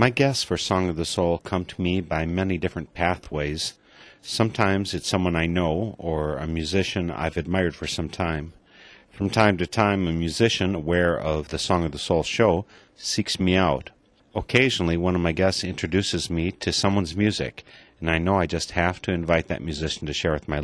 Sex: male